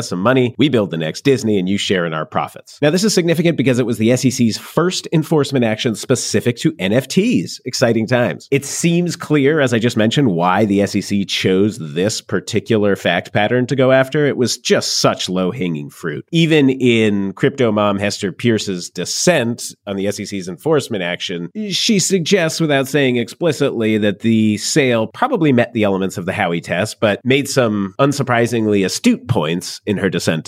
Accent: American